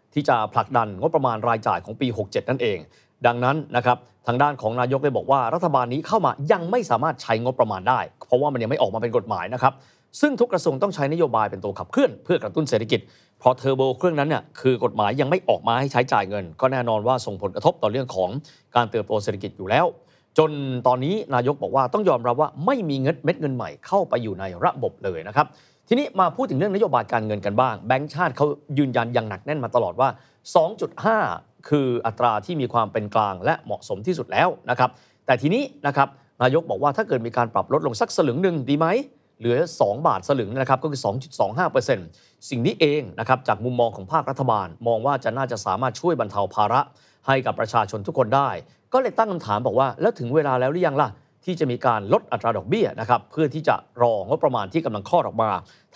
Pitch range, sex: 120-150 Hz, male